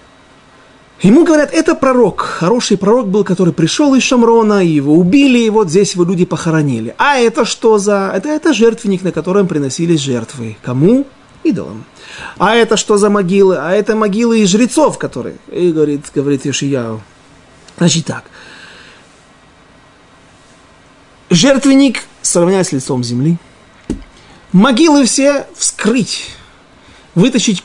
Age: 30-49